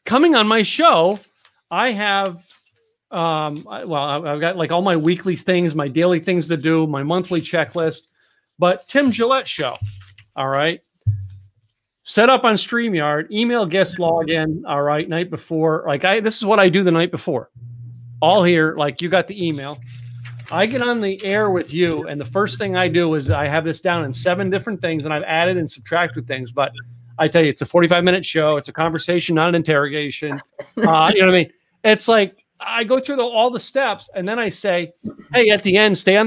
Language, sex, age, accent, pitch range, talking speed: English, male, 40-59, American, 155-195 Hz, 205 wpm